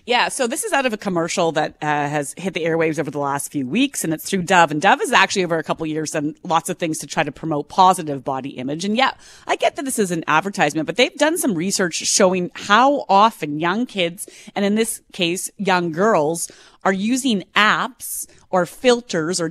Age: 30-49